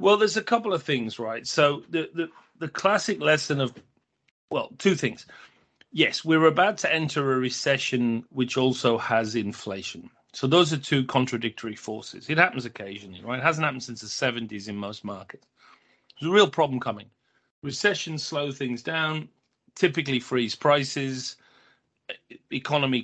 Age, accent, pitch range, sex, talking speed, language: 40-59, British, 115-155 Hz, male, 155 wpm, English